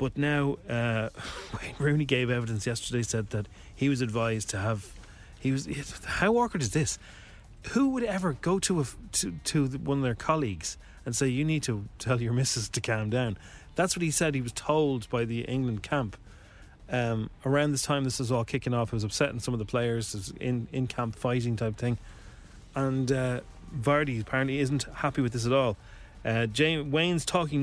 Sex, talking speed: male, 200 wpm